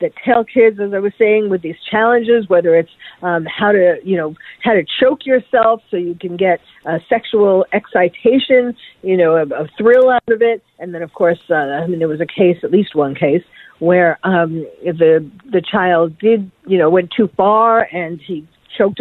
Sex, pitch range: female, 170-215 Hz